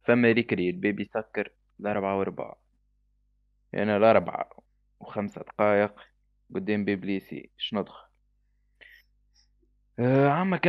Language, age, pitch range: English, 20-39, 105-140 Hz